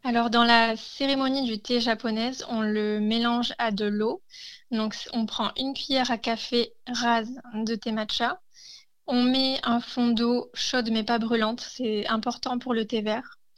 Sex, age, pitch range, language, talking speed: female, 20-39, 220-250 Hz, French, 170 wpm